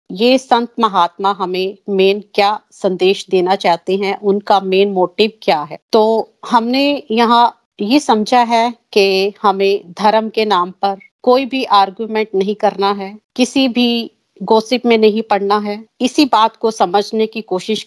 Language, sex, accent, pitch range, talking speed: Hindi, female, native, 190-220 Hz, 155 wpm